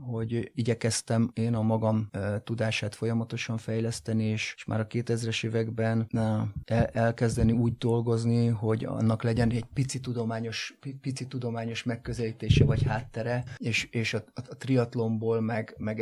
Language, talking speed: Hungarian, 140 wpm